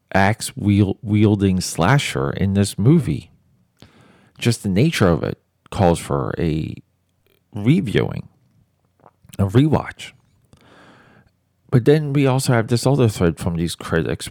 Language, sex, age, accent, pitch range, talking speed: English, male, 40-59, American, 85-110 Hz, 115 wpm